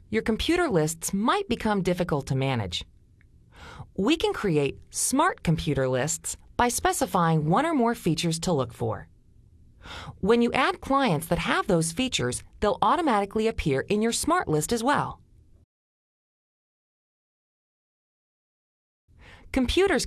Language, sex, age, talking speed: Hungarian, female, 40-59, 125 wpm